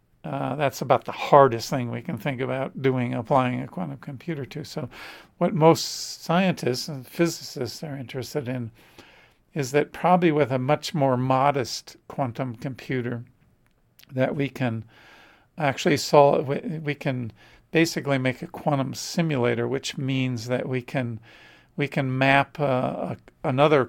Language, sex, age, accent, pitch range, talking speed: English, male, 50-69, American, 125-145 Hz, 140 wpm